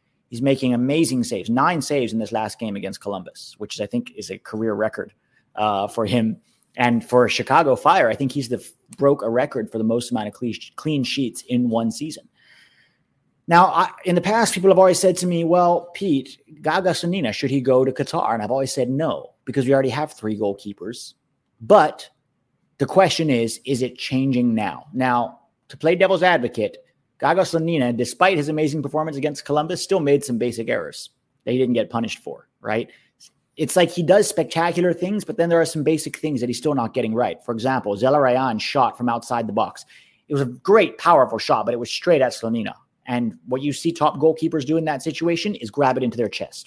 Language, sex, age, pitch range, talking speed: English, male, 30-49, 120-160 Hz, 205 wpm